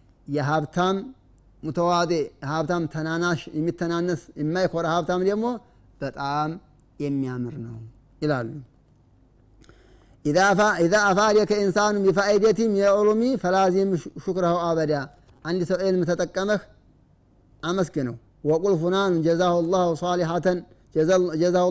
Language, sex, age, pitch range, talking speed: Amharic, male, 30-49, 135-185 Hz, 90 wpm